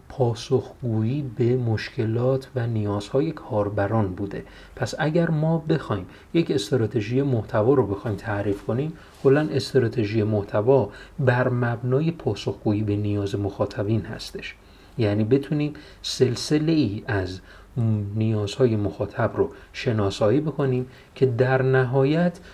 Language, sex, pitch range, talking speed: Persian, male, 105-135 Hz, 105 wpm